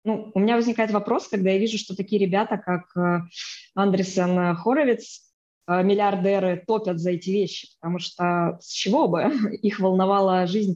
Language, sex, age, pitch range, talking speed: Russian, female, 20-39, 185-225 Hz, 150 wpm